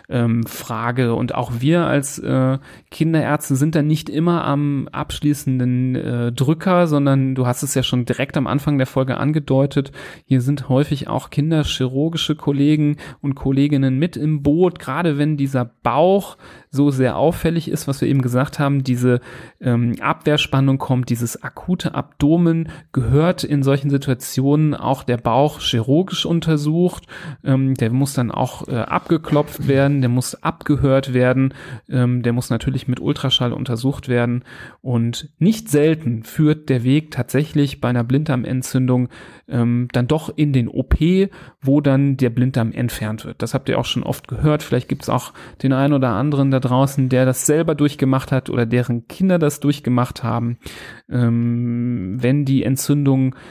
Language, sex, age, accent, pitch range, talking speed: German, male, 30-49, German, 125-150 Hz, 160 wpm